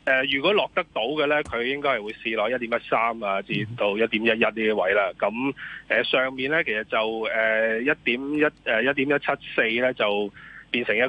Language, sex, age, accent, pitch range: Chinese, male, 30-49, native, 110-150 Hz